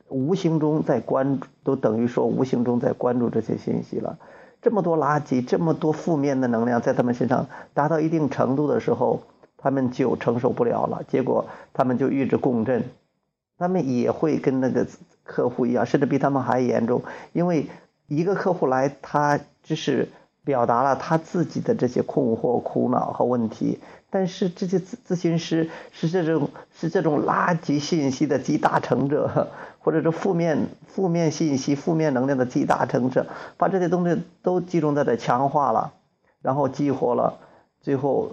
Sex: male